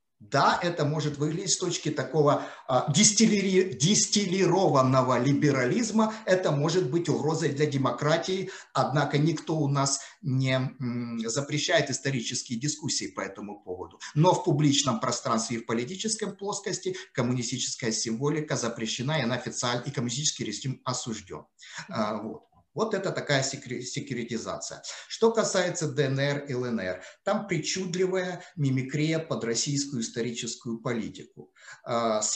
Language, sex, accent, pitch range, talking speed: Russian, male, native, 120-155 Hz, 115 wpm